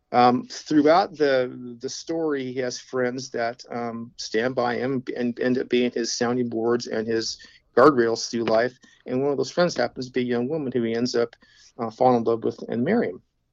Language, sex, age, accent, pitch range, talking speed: English, male, 50-69, American, 120-145 Hz, 210 wpm